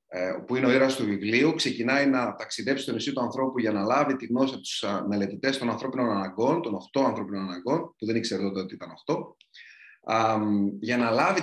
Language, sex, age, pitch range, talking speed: Greek, male, 30-49, 125-170 Hz, 200 wpm